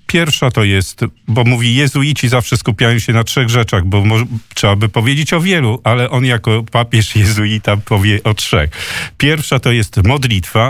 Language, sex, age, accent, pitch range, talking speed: Polish, male, 50-69, native, 105-135 Hz, 170 wpm